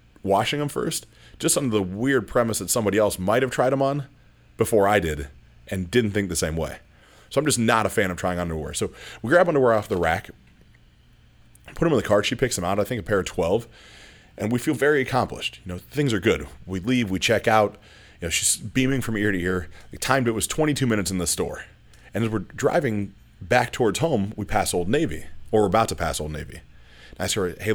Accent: American